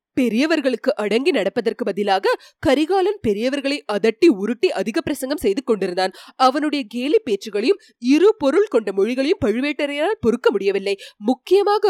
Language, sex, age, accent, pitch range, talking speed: Tamil, female, 20-39, native, 225-355 Hz, 115 wpm